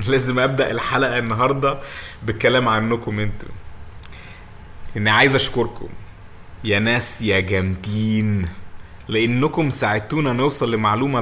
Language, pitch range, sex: Arabic, 100-130 Hz, male